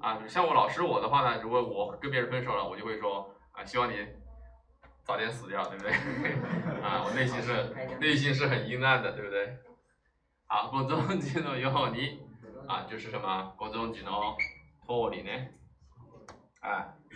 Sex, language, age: male, Chinese, 20-39